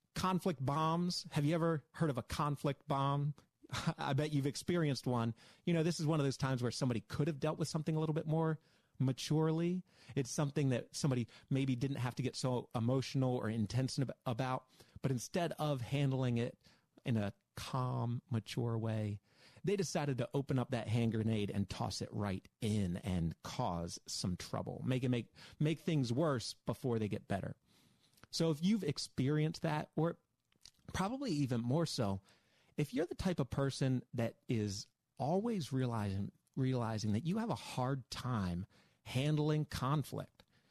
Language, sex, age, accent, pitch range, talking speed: English, male, 30-49, American, 115-155 Hz, 170 wpm